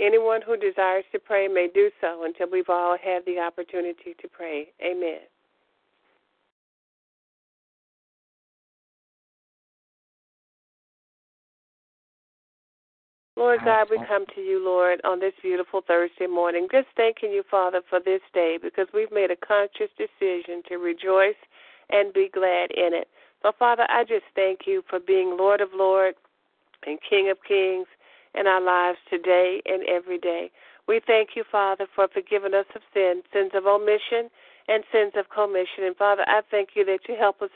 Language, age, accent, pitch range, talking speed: English, 50-69, American, 180-215 Hz, 155 wpm